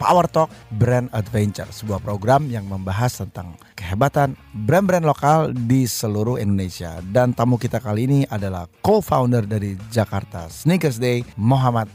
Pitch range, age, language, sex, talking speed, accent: 105-125 Hz, 20-39, Indonesian, male, 135 wpm, native